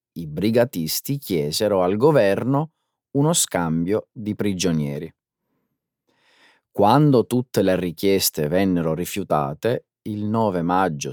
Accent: native